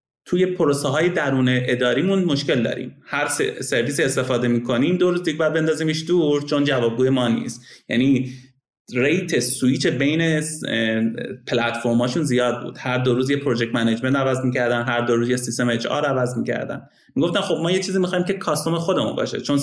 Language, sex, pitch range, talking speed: Persian, male, 125-180 Hz, 175 wpm